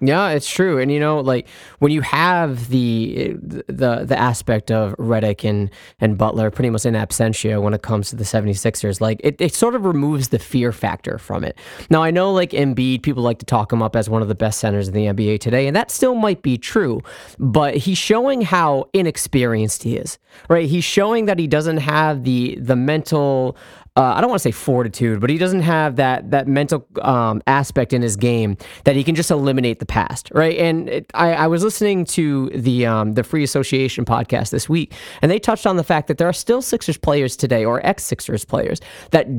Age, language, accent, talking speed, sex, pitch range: 20-39, English, American, 220 wpm, male, 115-165 Hz